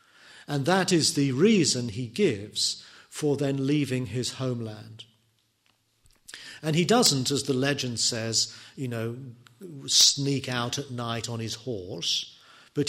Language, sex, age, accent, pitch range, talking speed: English, male, 40-59, British, 120-150 Hz, 135 wpm